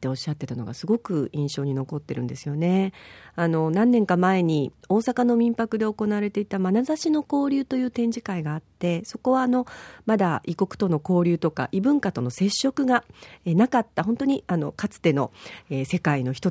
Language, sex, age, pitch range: Japanese, female, 40-59, 165-270 Hz